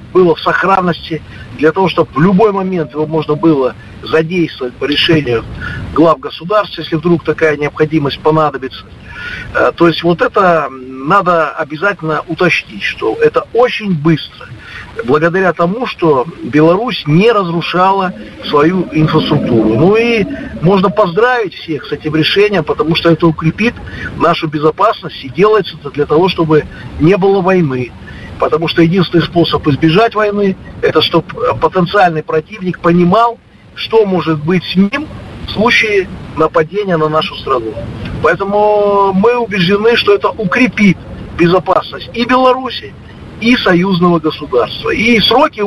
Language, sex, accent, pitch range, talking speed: Russian, male, native, 155-200 Hz, 130 wpm